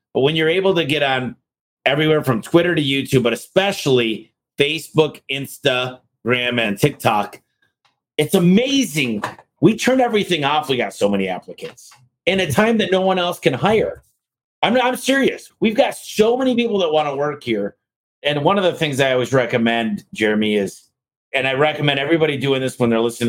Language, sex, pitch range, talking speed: English, male, 120-160 Hz, 180 wpm